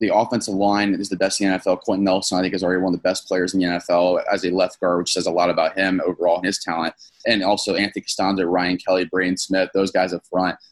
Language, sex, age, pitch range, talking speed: English, male, 20-39, 95-105 Hz, 275 wpm